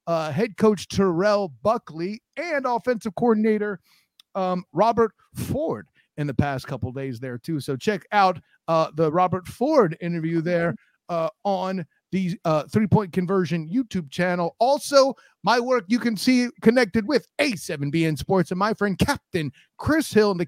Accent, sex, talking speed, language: American, male, 160 wpm, English